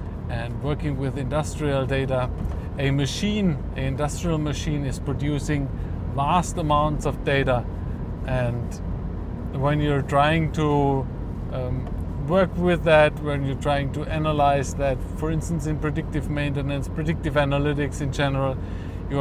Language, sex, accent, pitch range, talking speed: English, male, German, 125-150 Hz, 130 wpm